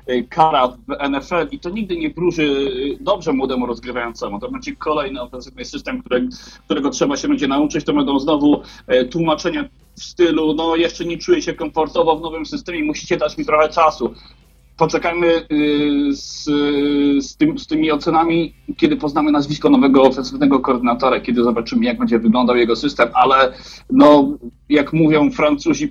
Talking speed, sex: 150 wpm, male